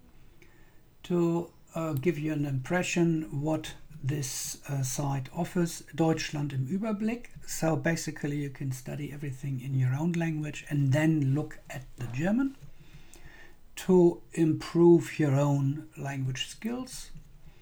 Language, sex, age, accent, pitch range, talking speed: English, male, 60-79, German, 135-160 Hz, 125 wpm